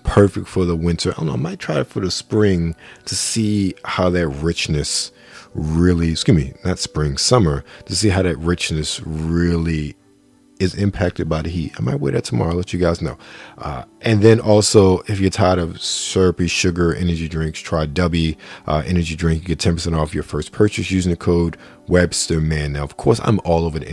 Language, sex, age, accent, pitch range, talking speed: English, male, 40-59, American, 80-95 Hz, 205 wpm